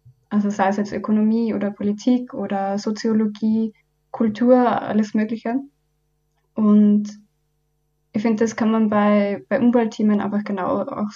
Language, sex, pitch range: German, female, 195-220 Hz